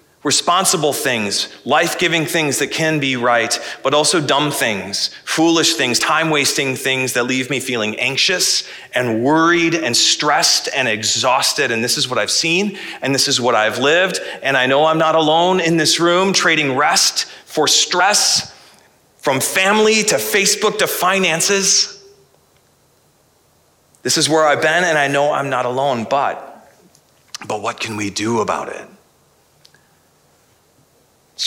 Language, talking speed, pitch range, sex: English, 150 wpm, 125-170 Hz, male